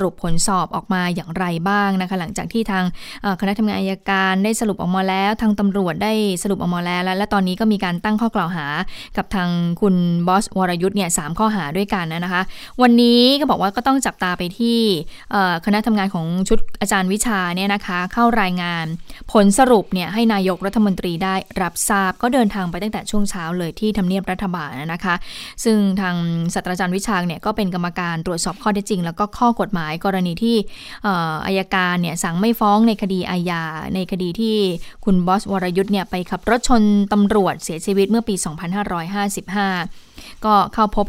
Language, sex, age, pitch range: Thai, female, 20-39, 180-210 Hz